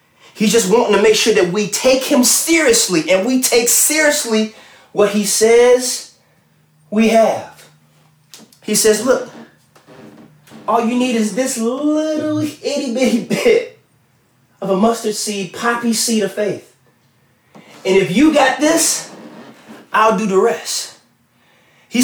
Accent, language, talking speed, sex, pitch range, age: American, English, 135 wpm, male, 180-250 Hz, 30-49